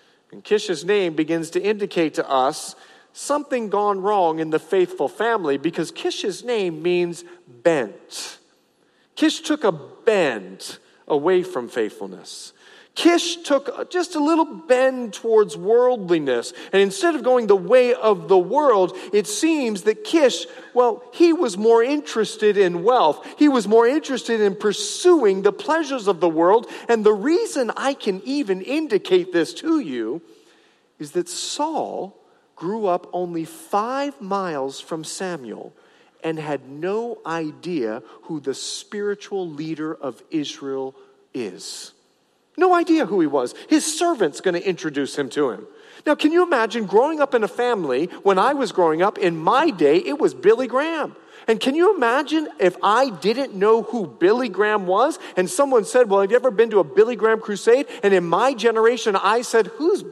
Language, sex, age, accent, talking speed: English, male, 40-59, American, 165 wpm